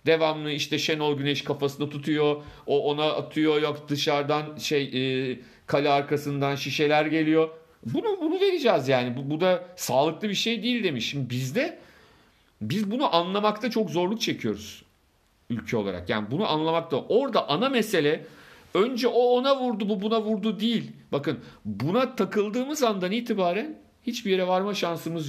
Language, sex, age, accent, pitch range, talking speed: Turkish, male, 50-69, native, 125-200 Hz, 145 wpm